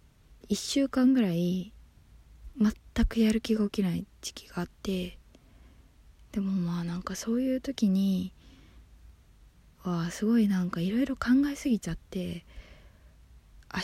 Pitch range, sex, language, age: 170-220 Hz, female, Japanese, 20-39